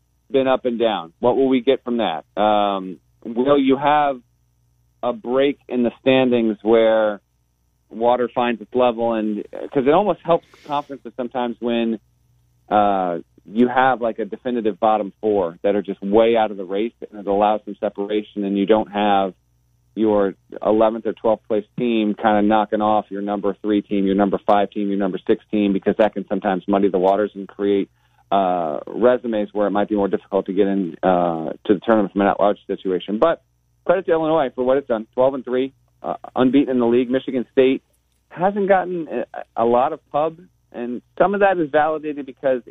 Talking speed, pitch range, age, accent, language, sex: 195 wpm, 100-125 Hz, 40-59, American, English, male